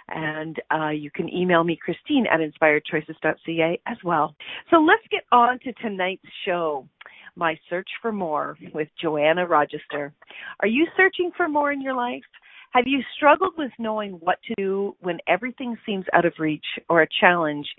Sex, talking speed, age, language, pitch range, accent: female, 170 wpm, 40-59, English, 170-250 Hz, American